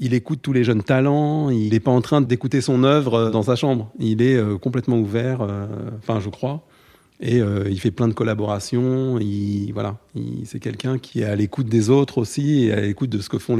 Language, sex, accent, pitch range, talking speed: French, male, French, 105-125 Hz, 230 wpm